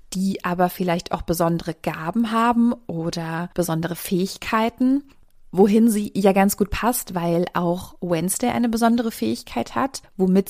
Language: German